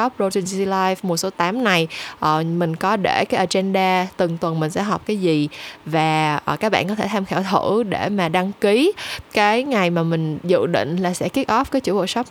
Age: 10-29